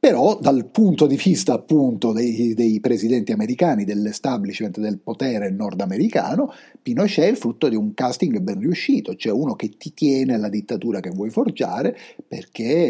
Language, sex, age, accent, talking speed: Italian, male, 50-69, native, 160 wpm